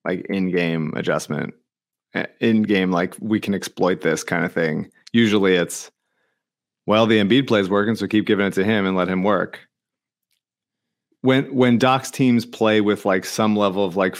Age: 30-49